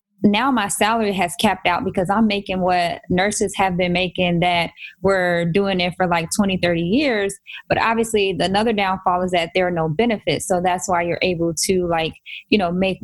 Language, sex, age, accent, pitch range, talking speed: English, female, 10-29, American, 185-230 Hz, 200 wpm